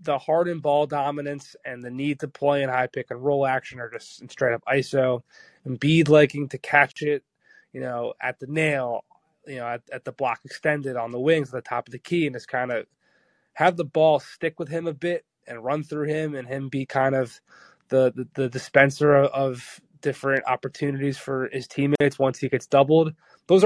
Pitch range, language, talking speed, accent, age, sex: 135-155 Hz, English, 215 wpm, American, 20-39, male